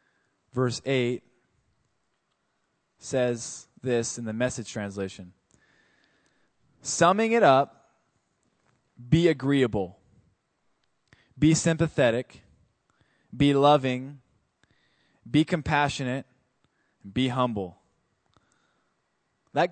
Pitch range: 120-175 Hz